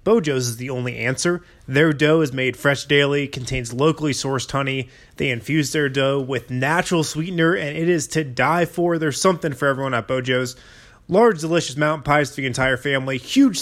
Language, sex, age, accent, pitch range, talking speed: English, male, 20-39, American, 130-160 Hz, 190 wpm